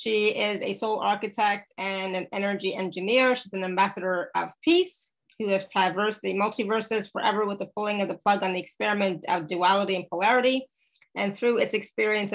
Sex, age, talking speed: female, 30-49, 180 wpm